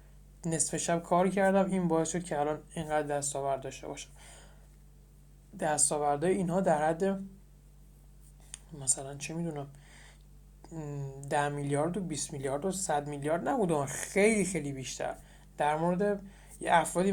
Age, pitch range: 20-39, 145-180 Hz